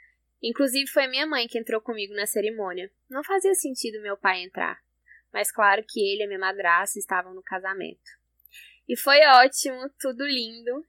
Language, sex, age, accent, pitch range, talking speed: Portuguese, female, 10-29, Brazilian, 215-265 Hz, 175 wpm